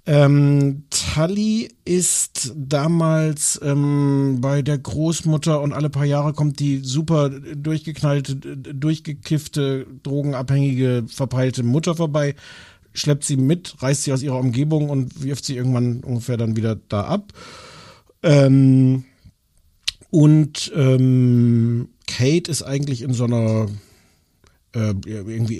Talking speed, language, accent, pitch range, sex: 115 wpm, German, German, 120-150 Hz, male